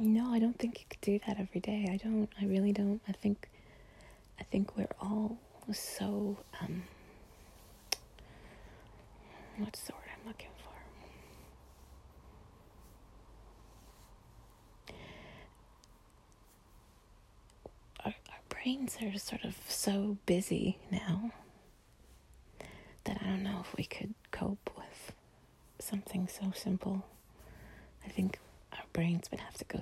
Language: English